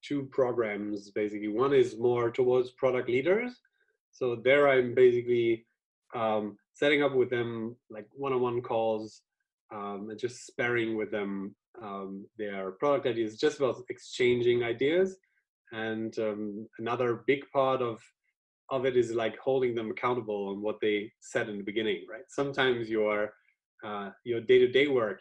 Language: English